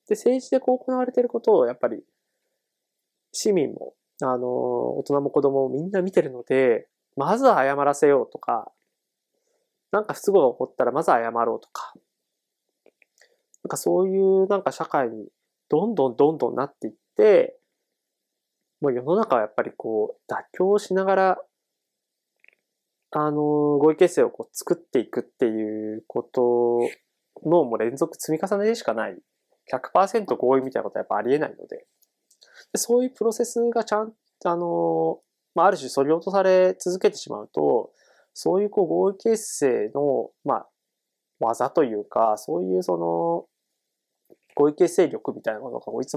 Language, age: Japanese, 20-39